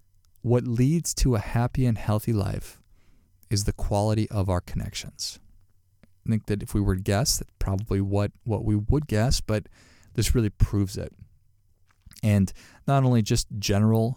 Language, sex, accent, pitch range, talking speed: English, male, American, 100-115 Hz, 165 wpm